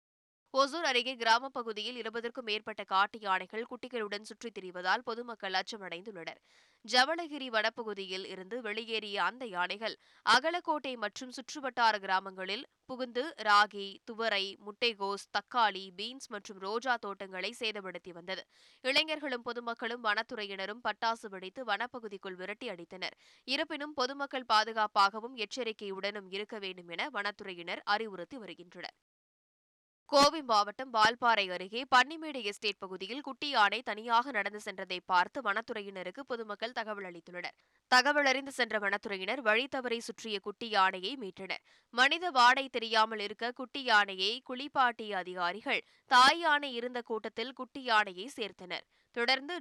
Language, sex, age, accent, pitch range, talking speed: Tamil, female, 20-39, native, 200-250 Hz, 105 wpm